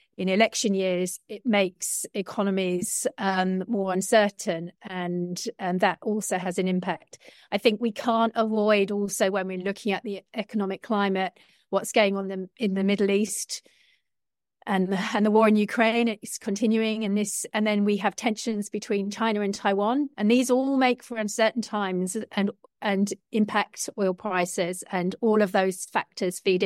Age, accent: 40-59, British